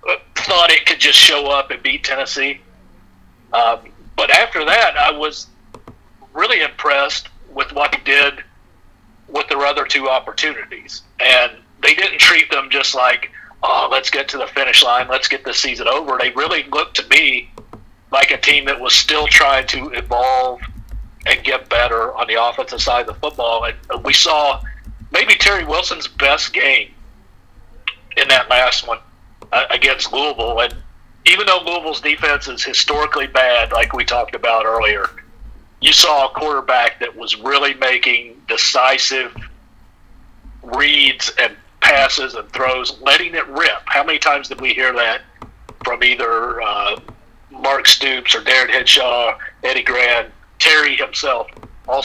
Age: 50-69